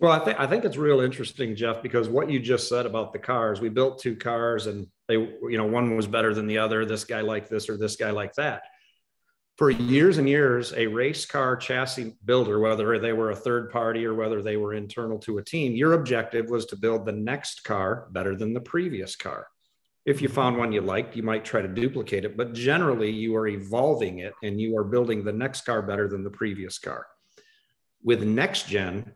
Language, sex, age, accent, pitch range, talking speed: English, male, 40-59, American, 110-130 Hz, 225 wpm